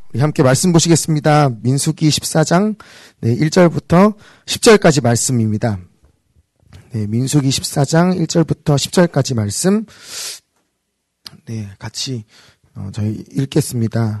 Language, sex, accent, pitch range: Korean, male, native, 120-160 Hz